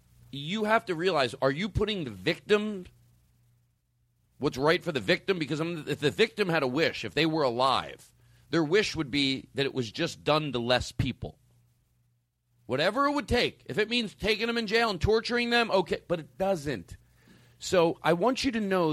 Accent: American